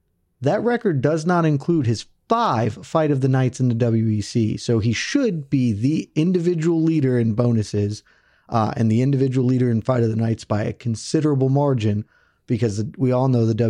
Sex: male